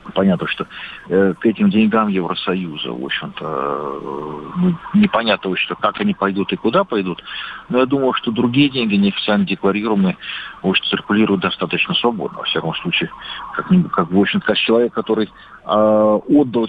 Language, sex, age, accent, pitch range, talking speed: Russian, male, 50-69, native, 100-145 Hz, 160 wpm